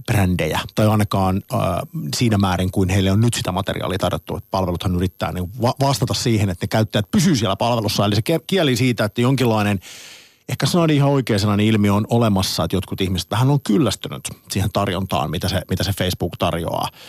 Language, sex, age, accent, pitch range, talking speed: Finnish, male, 50-69, native, 90-120 Hz, 190 wpm